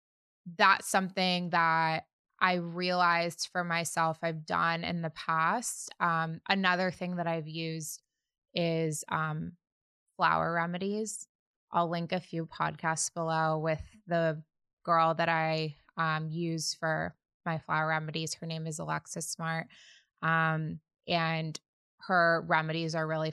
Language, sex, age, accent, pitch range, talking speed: English, female, 20-39, American, 160-180 Hz, 130 wpm